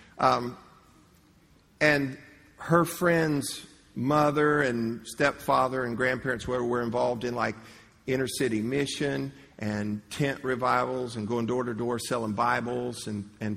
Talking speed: 125 wpm